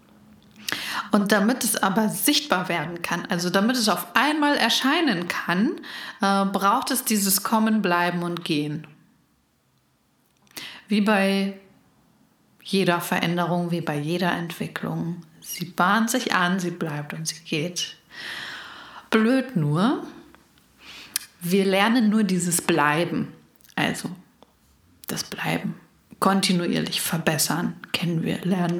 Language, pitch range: German, 175-215 Hz